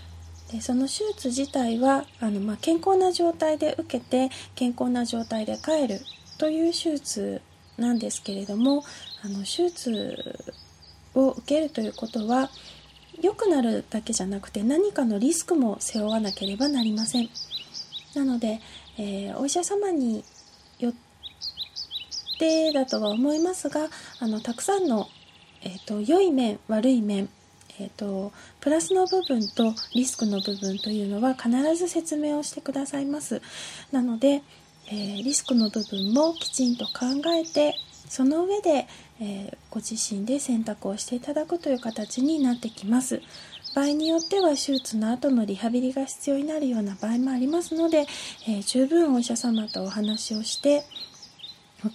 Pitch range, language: 220-295 Hz, Japanese